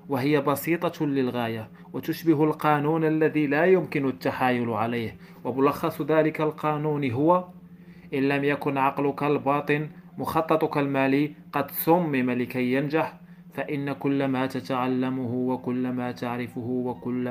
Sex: male